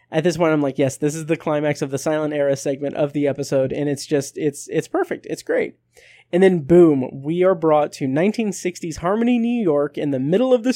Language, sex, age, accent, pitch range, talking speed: English, male, 20-39, American, 150-210 Hz, 235 wpm